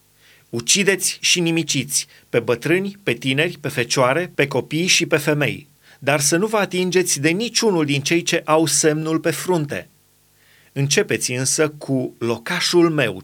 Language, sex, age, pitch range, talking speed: Romanian, male, 30-49, 125-175 Hz, 150 wpm